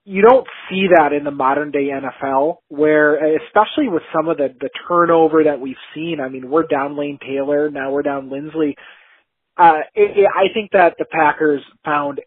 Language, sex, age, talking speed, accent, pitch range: English, male, 30-49, 185 wpm, American, 135-160 Hz